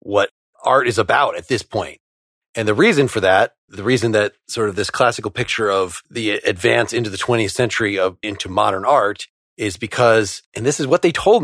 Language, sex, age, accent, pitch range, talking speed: English, male, 30-49, American, 105-135 Hz, 205 wpm